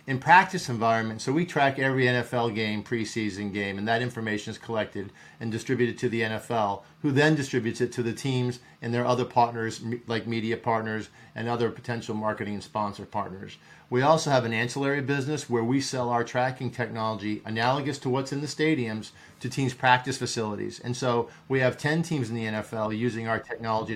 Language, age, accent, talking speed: English, 50-69, American, 190 wpm